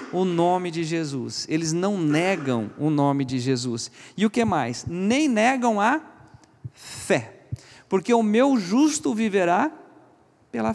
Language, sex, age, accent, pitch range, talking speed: Portuguese, male, 40-59, Brazilian, 140-200 Hz, 140 wpm